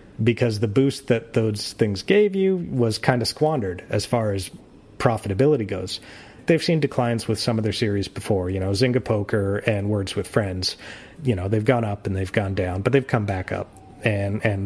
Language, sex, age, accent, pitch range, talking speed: English, male, 30-49, American, 100-120 Hz, 205 wpm